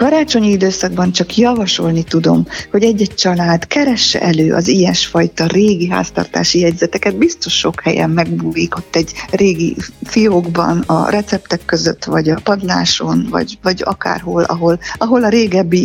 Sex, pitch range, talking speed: female, 170-200 Hz, 135 wpm